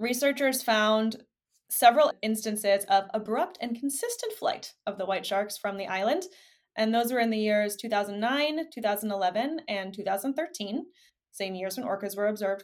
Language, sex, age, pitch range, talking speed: English, female, 20-39, 205-270 Hz, 150 wpm